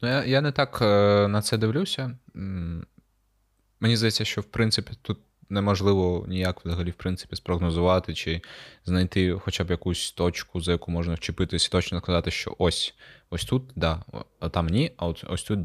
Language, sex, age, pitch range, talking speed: Ukrainian, male, 20-39, 90-105 Hz, 165 wpm